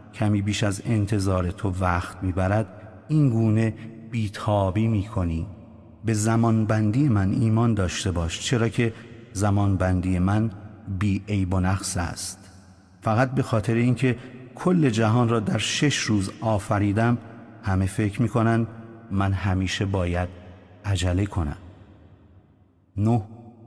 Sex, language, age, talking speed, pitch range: male, English, 30-49, 120 wpm, 95-110 Hz